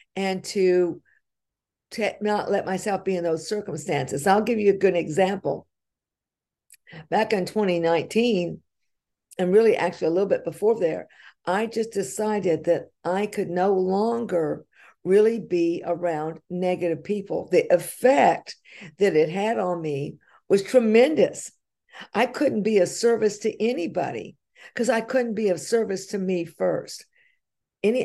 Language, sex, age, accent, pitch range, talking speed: English, female, 50-69, American, 180-225 Hz, 140 wpm